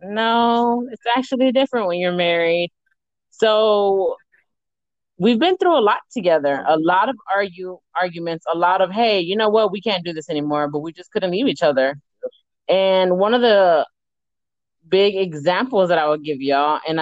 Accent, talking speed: American, 175 wpm